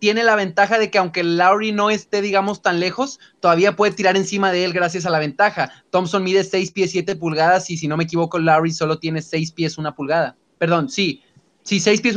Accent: Mexican